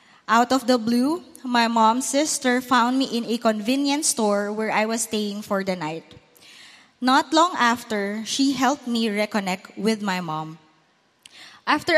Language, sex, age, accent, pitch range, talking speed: English, female, 20-39, Filipino, 210-265 Hz, 155 wpm